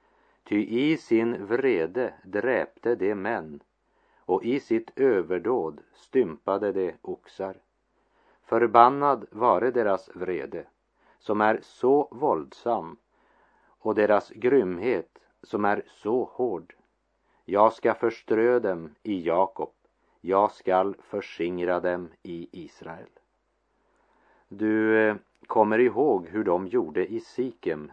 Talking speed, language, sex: 105 wpm, French, male